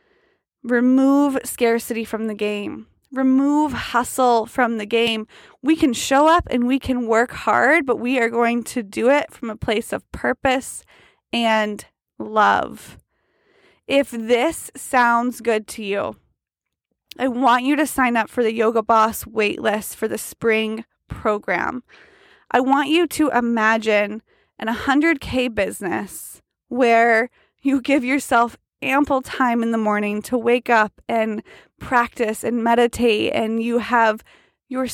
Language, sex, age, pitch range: English, female, 20-39, 225-265 Hz